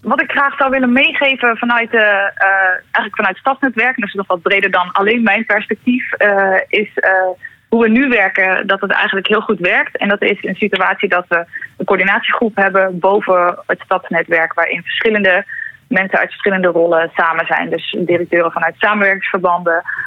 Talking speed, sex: 180 wpm, female